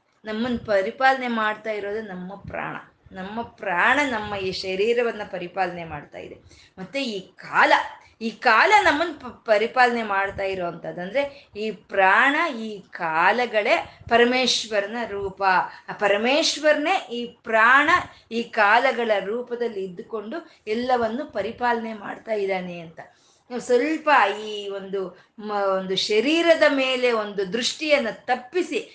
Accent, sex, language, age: native, female, Kannada, 20-39